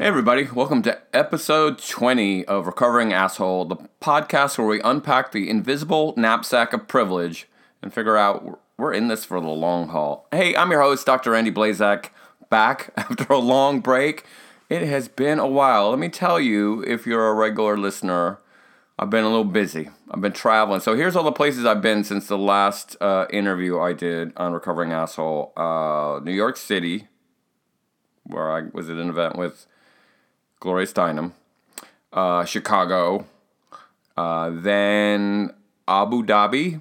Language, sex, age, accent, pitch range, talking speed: English, male, 40-59, American, 90-115 Hz, 160 wpm